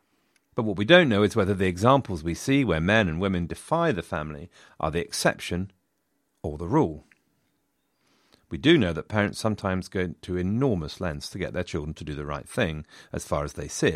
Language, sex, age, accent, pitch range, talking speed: English, male, 40-59, British, 85-110 Hz, 205 wpm